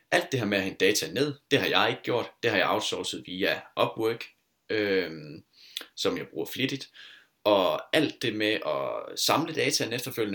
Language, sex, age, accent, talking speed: Danish, male, 20-39, native, 185 wpm